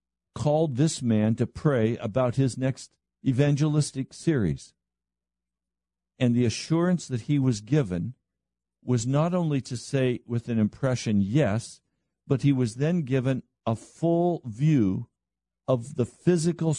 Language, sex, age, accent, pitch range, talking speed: English, male, 50-69, American, 115-155 Hz, 130 wpm